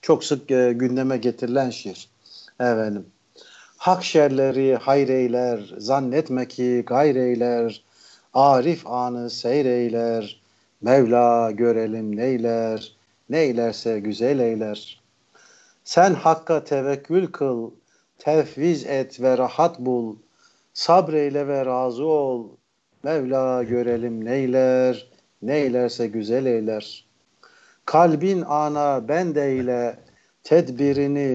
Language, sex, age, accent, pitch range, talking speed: Turkish, male, 50-69, native, 120-145 Hz, 80 wpm